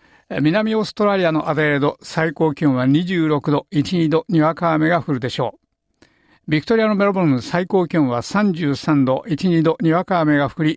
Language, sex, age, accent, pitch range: Japanese, male, 60-79, native, 145-180 Hz